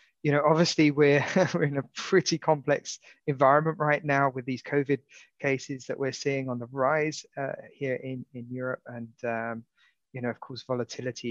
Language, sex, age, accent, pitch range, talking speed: English, male, 30-49, British, 120-145 Hz, 180 wpm